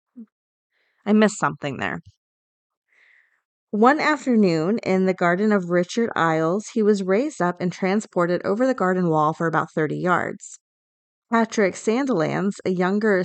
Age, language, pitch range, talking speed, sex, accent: 30-49, English, 170-210 Hz, 135 wpm, female, American